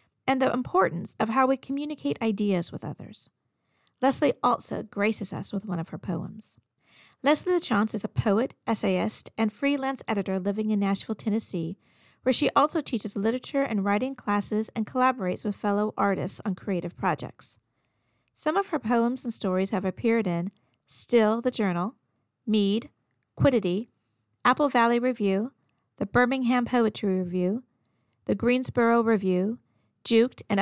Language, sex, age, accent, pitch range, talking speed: English, female, 40-59, American, 195-245 Hz, 145 wpm